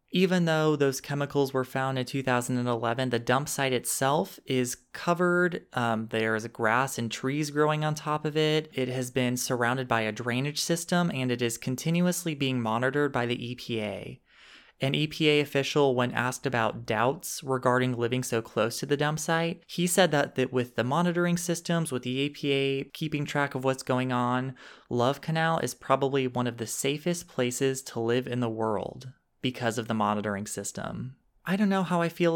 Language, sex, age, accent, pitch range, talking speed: English, male, 30-49, American, 120-155 Hz, 180 wpm